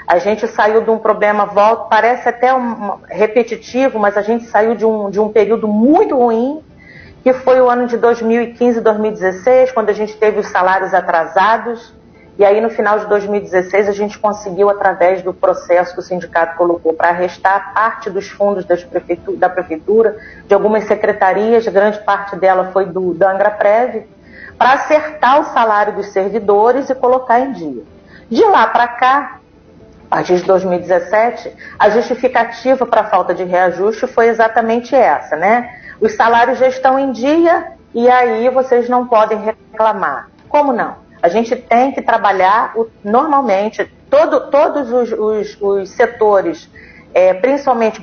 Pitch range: 200-245 Hz